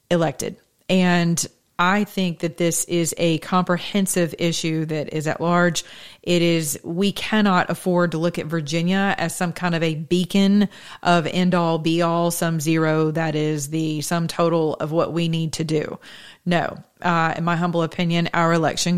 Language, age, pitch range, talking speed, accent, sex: English, 30-49, 165-190 Hz, 175 wpm, American, female